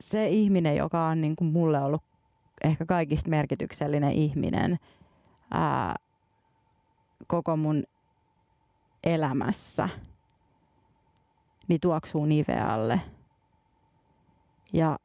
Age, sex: 30-49, female